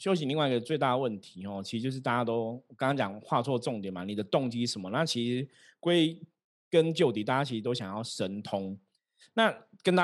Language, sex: Chinese, male